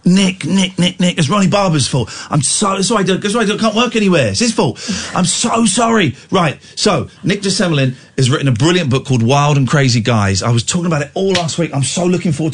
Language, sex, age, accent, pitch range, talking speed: English, male, 40-59, British, 115-175 Hz, 255 wpm